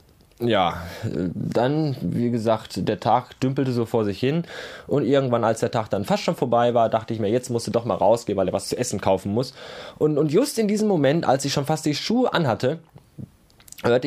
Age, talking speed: 20-39, 215 wpm